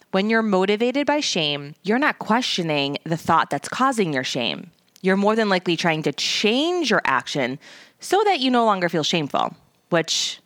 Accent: American